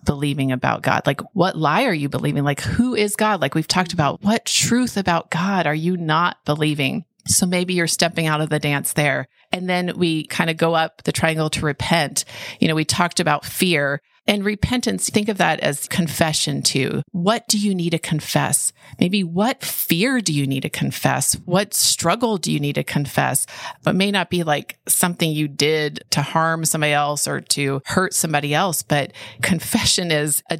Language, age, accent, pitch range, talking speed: English, 30-49, American, 140-175 Hz, 200 wpm